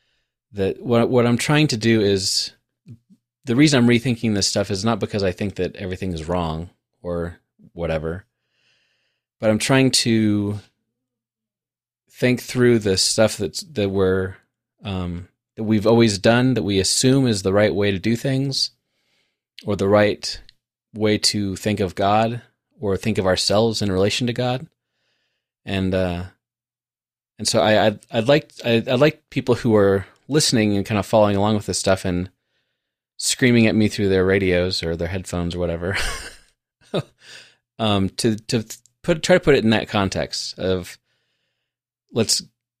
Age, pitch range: 30-49, 95-120 Hz